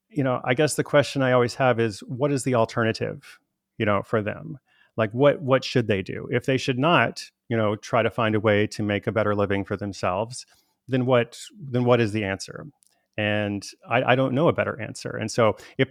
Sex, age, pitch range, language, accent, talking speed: male, 30-49, 105-130 Hz, English, American, 225 wpm